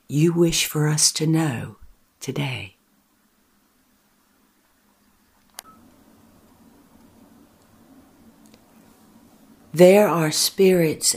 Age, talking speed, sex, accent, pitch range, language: 60-79, 55 wpm, female, American, 165-245 Hz, English